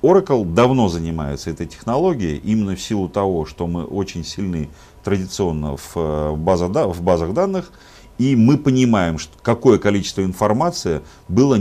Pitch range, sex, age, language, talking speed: 85-115 Hz, male, 40-59, Russian, 145 wpm